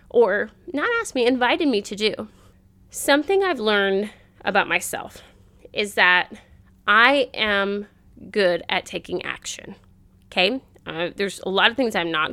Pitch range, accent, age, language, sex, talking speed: 195-270 Hz, American, 20-39, English, female, 145 wpm